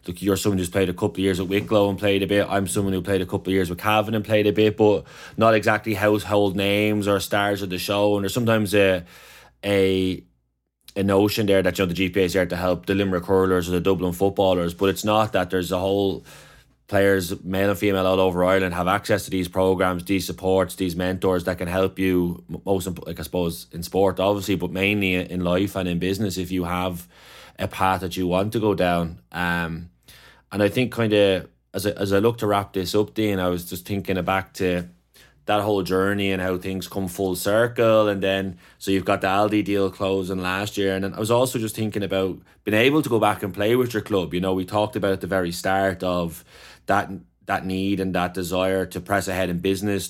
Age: 20-39